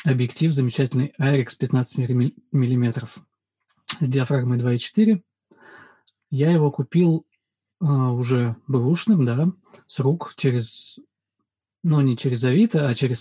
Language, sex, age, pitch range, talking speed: Russian, male, 20-39, 125-160 Hz, 115 wpm